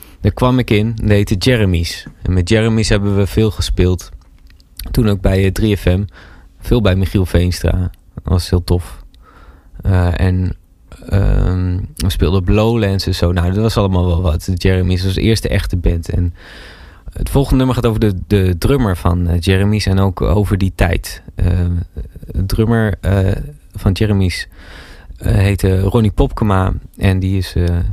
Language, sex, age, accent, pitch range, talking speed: Dutch, male, 20-39, Dutch, 85-105 Hz, 165 wpm